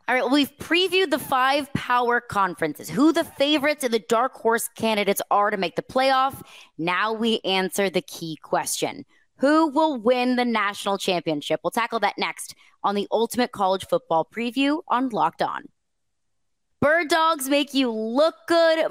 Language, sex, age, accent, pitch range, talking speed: English, female, 20-39, American, 195-280 Hz, 165 wpm